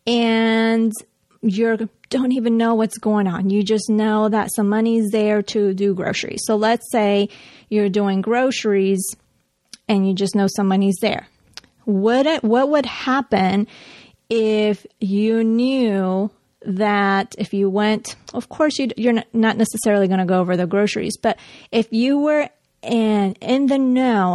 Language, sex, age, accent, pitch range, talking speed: English, female, 30-49, American, 200-225 Hz, 155 wpm